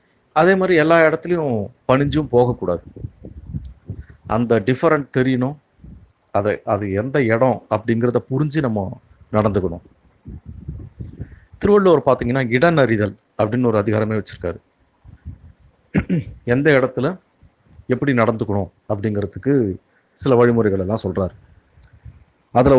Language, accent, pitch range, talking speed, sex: Tamil, native, 105-135 Hz, 85 wpm, male